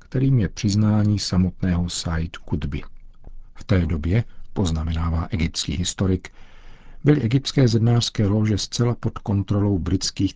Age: 50-69